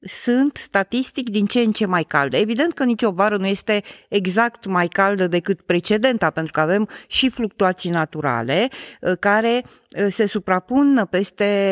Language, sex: Romanian, female